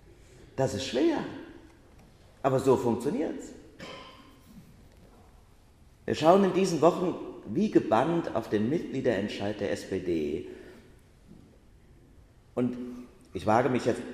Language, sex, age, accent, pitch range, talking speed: German, male, 40-59, German, 110-145 Hz, 100 wpm